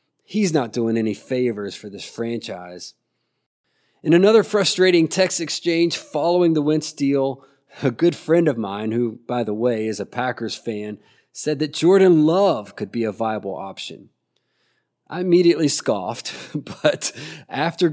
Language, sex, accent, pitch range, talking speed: English, male, American, 135-175 Hz, 145 wpm